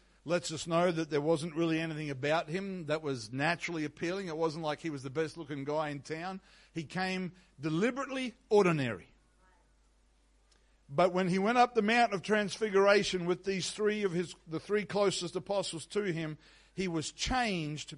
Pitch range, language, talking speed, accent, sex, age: 155-205 Hz, English, 170 wpm, Australian, male, 60-79